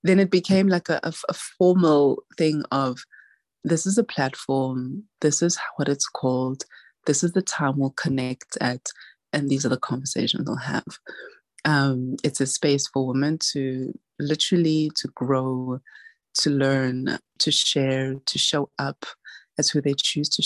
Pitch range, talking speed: 135-165 Hz, 160 wpm